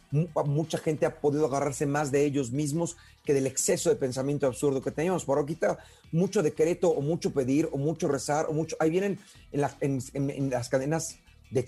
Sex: male